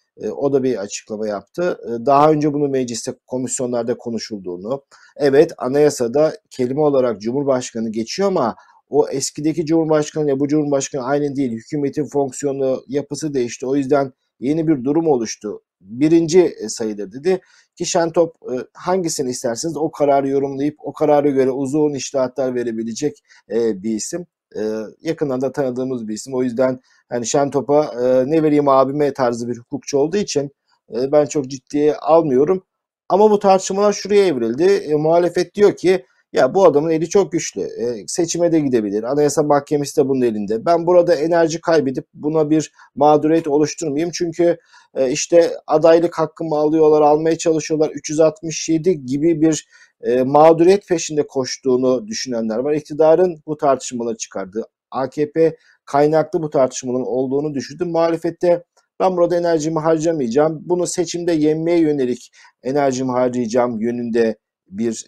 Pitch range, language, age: 130-165 Hz, Turkish, 50-69